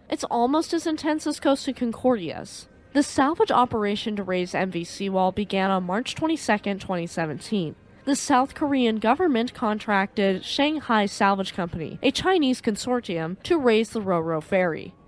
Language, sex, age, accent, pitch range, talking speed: English, female, 10-29, American, 190-275 Hz, 140 wpm